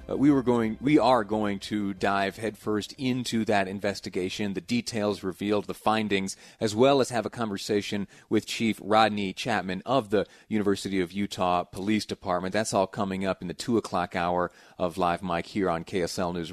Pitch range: 100-130 Hz